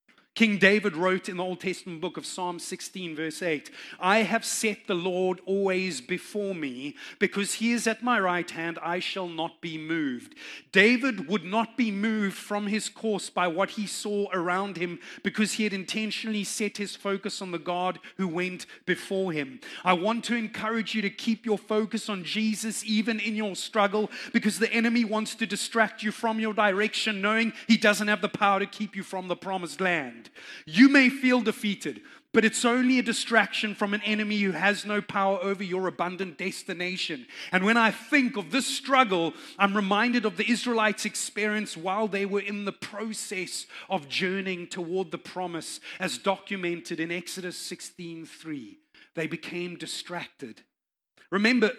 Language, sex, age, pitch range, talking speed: English, male, 30-49, 180-220 Hz, 175 wpm